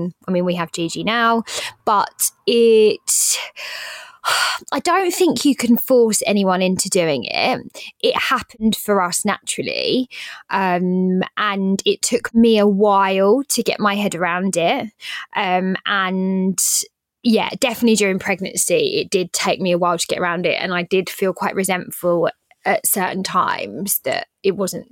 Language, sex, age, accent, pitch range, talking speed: English, female, 20-39, British, 185-235 Hz, 155 wpm